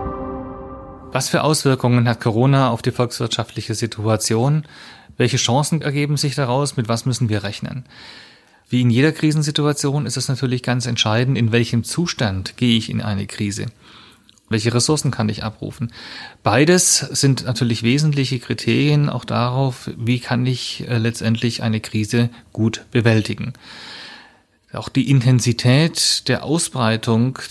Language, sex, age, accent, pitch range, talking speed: German, male, 30-49, German, 115-135 Hz, 135 wpm